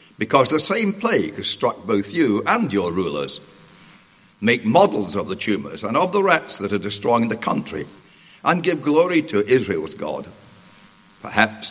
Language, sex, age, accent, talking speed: English, male, 60-79, British, 165 wpm